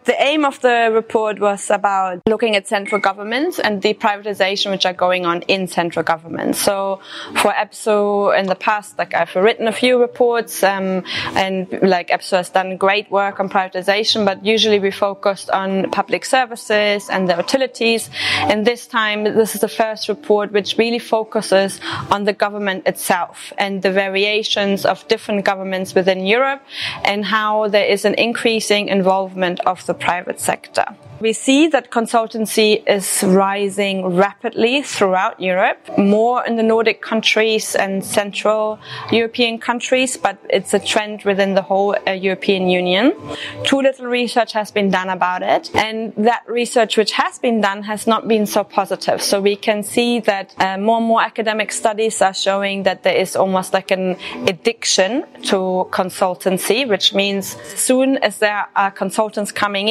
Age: 20-39